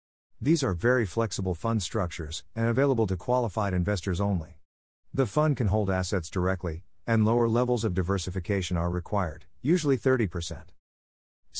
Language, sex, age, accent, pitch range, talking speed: English, male, 50-69, American, 90-115 Hz, 140 wpm